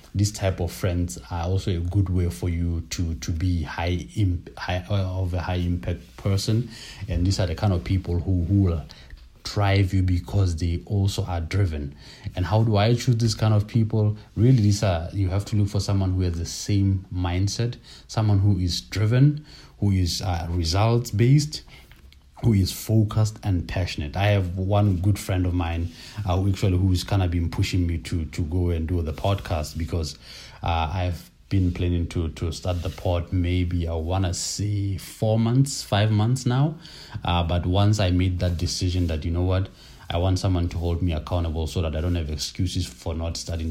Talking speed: 195 wpm